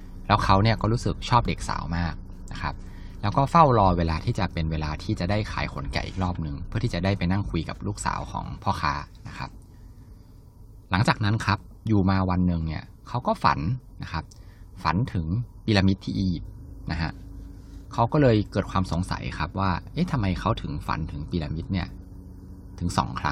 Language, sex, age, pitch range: Thai, male, 20-39, 85-105 Hz